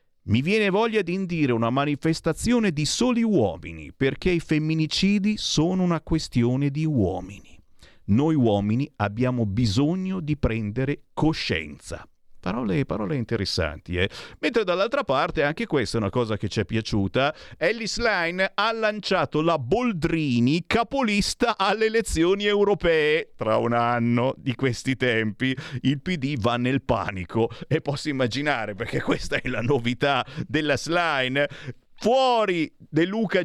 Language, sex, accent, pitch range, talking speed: Italian, male, native, 125-190 Hz, 135 wpm